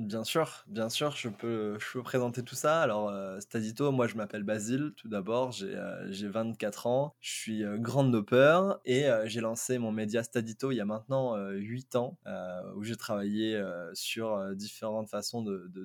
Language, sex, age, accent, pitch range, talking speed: French, male, 20-39, French, 105-130 Hz, 200 wpm